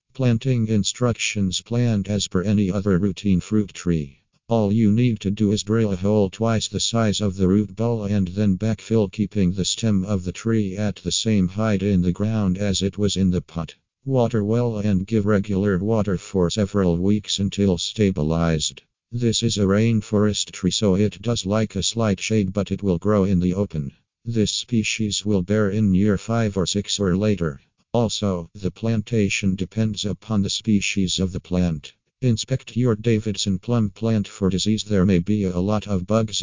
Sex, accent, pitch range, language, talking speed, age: male, American, 95-110 Hz, Italian, 185 wpm, 50-69